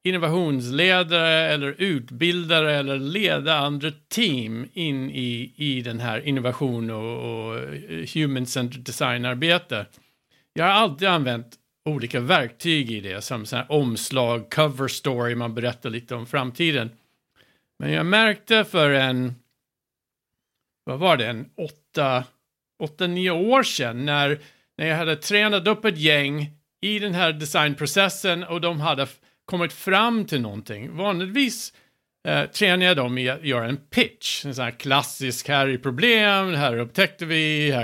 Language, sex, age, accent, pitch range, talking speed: Swedish, male, 50-69, Norwegian, 125-180 Hz, 140 wpm